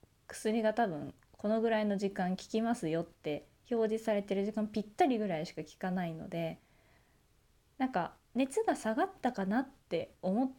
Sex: female